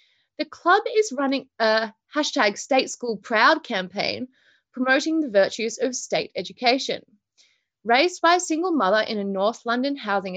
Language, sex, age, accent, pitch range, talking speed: English, female, 20-39, Australian, 215-325 Hz, 150 wpm